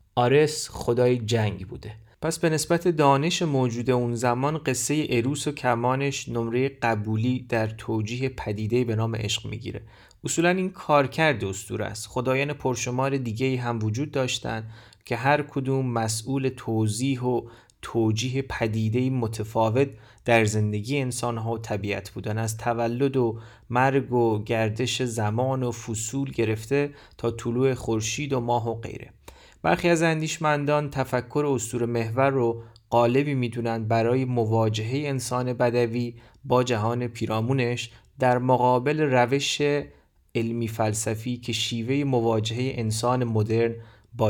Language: Persian